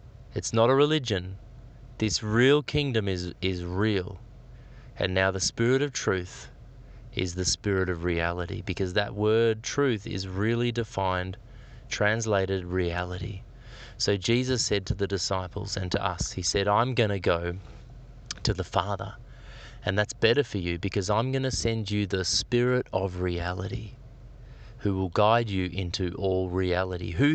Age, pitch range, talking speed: 20-39, 95-120 Hz, 155 wpm